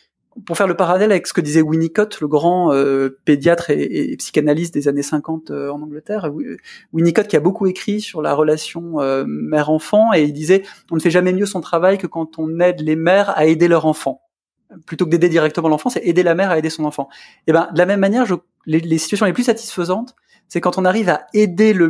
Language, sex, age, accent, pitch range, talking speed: French, male, 20-39, French, 150-190 Hz, 240 wpm